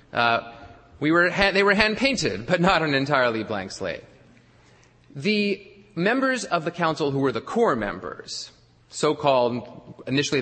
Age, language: 30-49, English